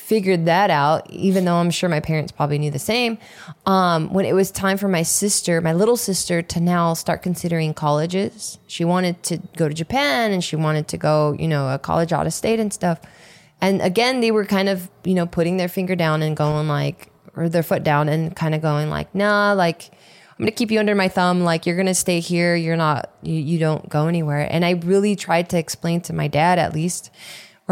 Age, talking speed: 20-39, 235 wpm